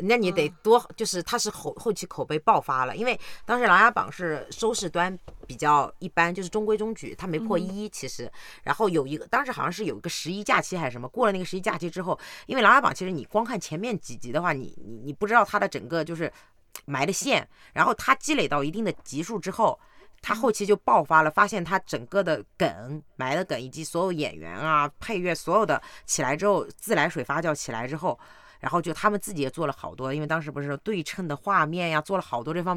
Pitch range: 150-205 Hz